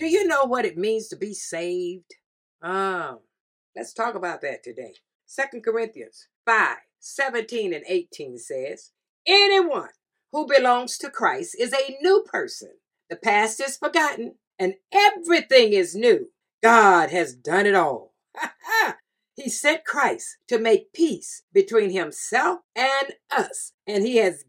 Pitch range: 240-395 Hz